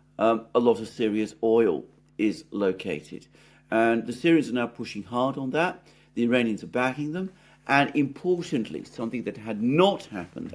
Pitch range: 105-135 Hz